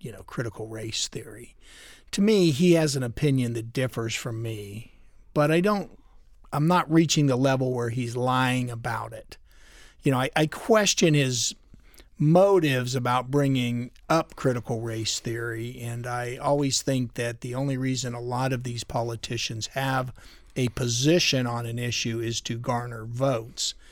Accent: American